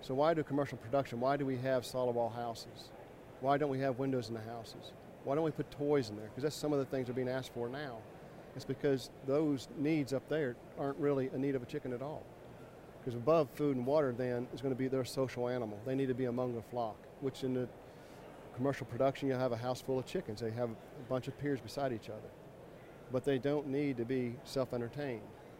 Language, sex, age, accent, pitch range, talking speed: English, male, 40-59, American, 120-140 Hz, 240 wpm